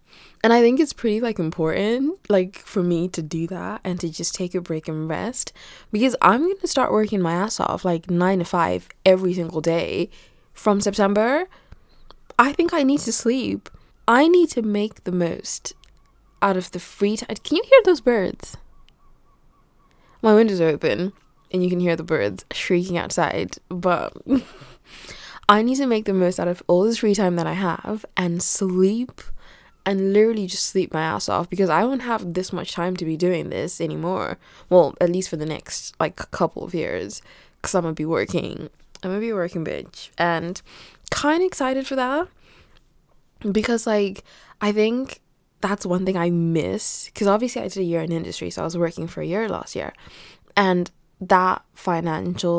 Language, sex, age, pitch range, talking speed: English, female, 20-39, 170-225 Hz, 190 wpm